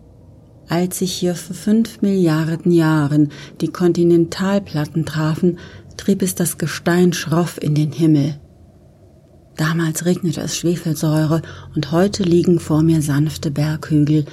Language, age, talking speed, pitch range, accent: German, 40-59, 120 wpm, 150-180 Hz, German